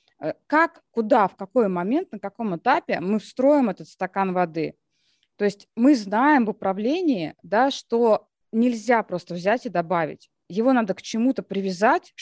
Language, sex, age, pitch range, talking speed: Russian, female, 20-39, 180-255 Hz, 145 wpm